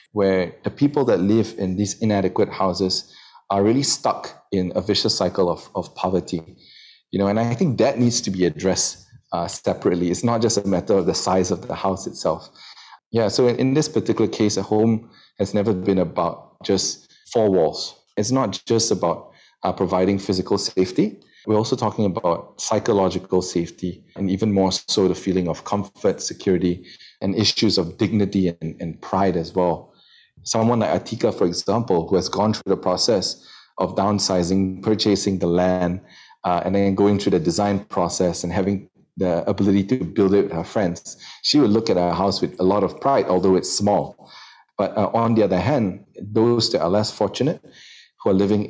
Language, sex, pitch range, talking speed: English, male, 95-110 Hz, 190 wpm